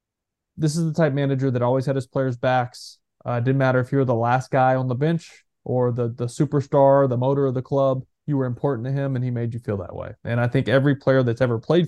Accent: American